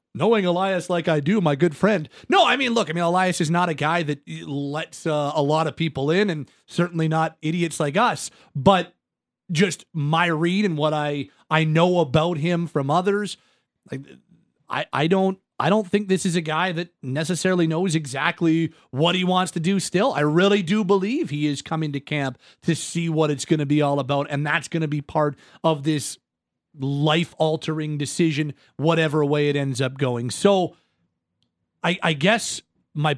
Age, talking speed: 30-49, 190 wpm